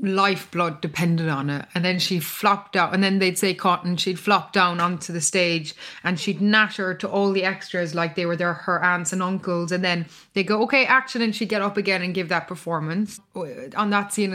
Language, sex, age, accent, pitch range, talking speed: English, female, 20-39, Irish, 180-225 Hz, 225 wpm